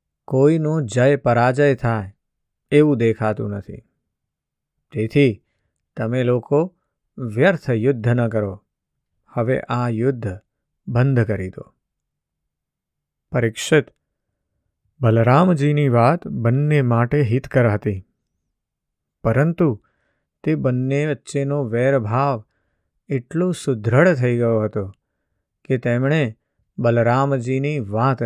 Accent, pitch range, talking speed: native, 110-140 Hz, 75 wpm